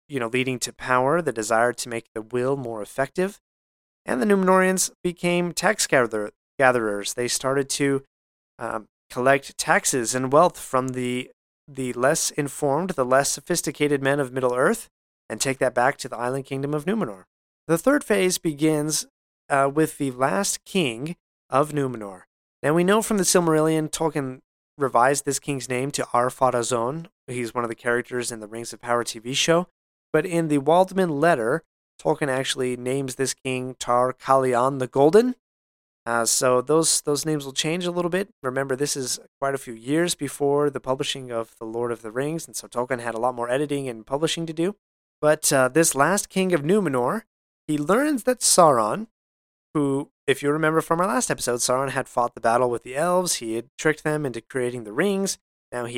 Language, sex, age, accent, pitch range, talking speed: English, male, 30-49, American, 125-165 Hz, 185 wpm